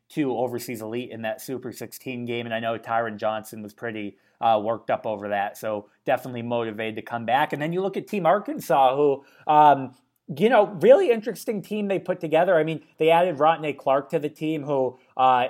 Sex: male